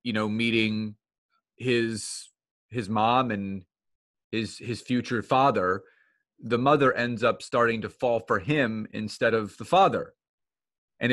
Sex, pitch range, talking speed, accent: male, 110-140 Hz, 135 wpm, American